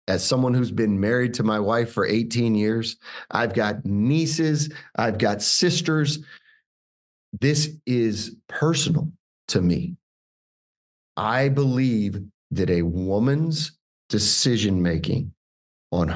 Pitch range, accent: 110-145 Hz, American